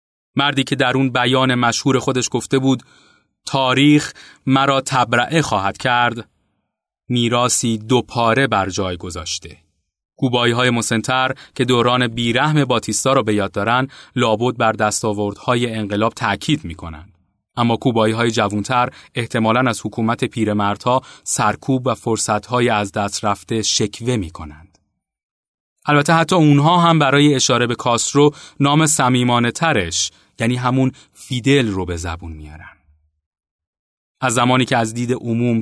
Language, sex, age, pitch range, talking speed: Persian, male, 30-49, 105-130 Hz, 130 wpm